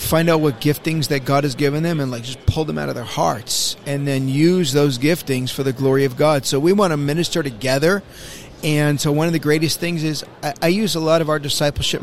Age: 40-59